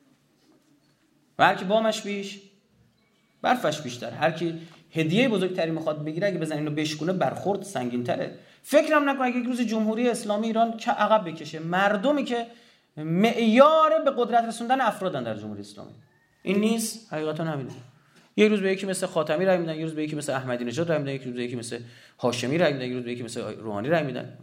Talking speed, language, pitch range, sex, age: 185 wpm, Persian, 145-220 Hz, male, 30-49